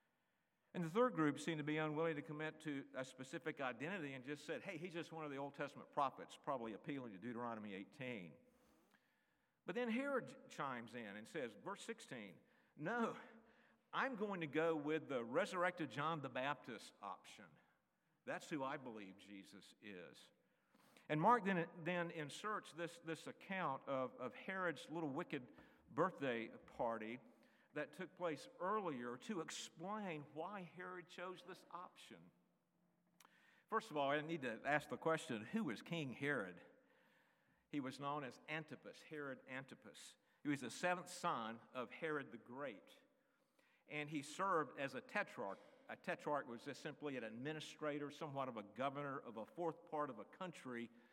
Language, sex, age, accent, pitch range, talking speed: English, male, 50-69, American, 135-180 Hz, 160 wpm